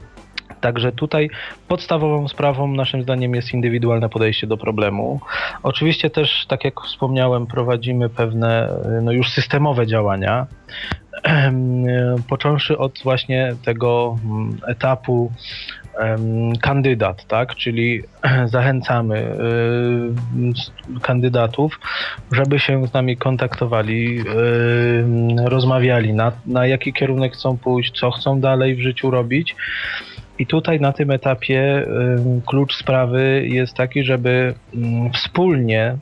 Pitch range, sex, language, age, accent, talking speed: 120-135 Hz, male, Polish, 20-39, native, 100 wpm